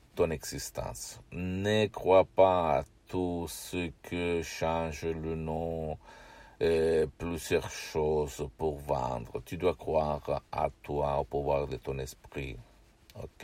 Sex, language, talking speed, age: male, Italian, 125 wpm, 60-79